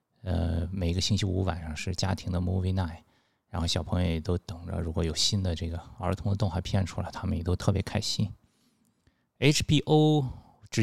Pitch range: 90-115 Hz